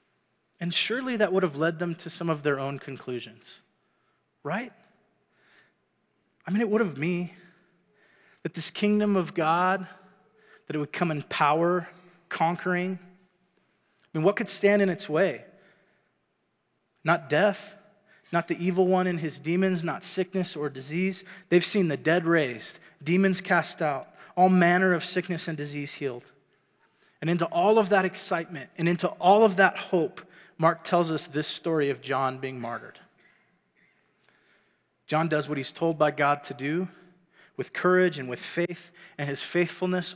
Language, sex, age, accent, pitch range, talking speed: English, male, 30-49, American, 150-185 Hz, 160 wpm